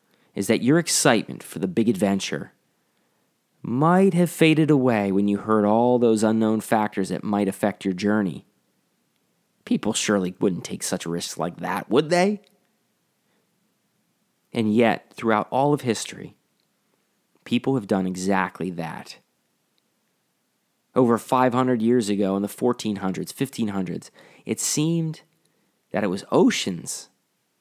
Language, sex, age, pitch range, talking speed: English, male, 30-49, 100-145 Hz, 130 wpm